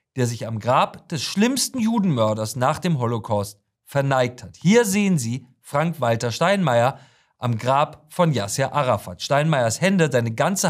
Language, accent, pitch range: German, German, 125-190 Hz